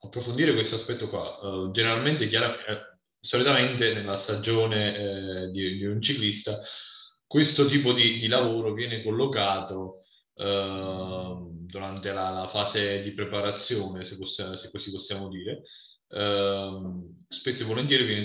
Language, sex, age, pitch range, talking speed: Italian, male, 20-39, 100-120 Hz, 100 wpm